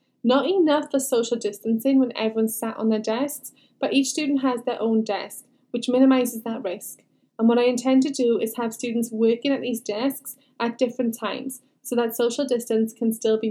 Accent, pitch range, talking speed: British, 225-270 Hz, 200 wpm